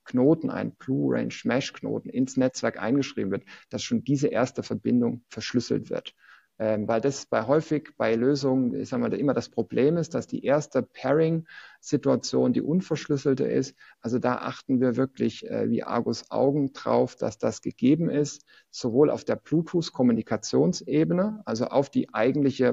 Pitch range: 120-145 Hz